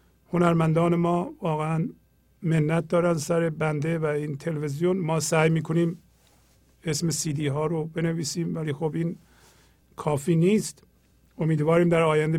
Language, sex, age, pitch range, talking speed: Persian, male, 50-69, 150-170 Hz, 120 wpm